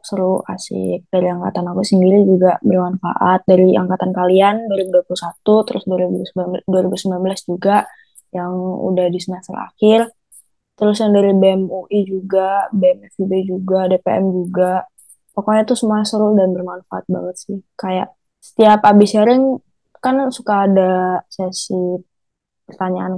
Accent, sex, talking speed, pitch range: native, female, 120 wpm, 185-230 Hz